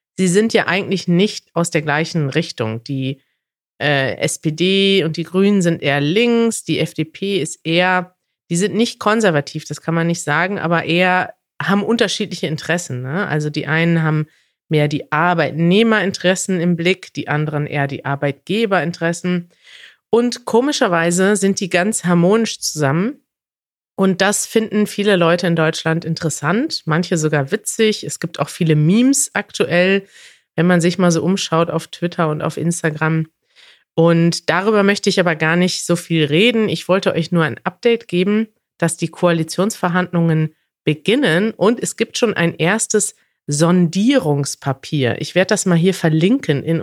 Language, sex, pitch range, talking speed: German, female, 160-200 Hz, 155 wpm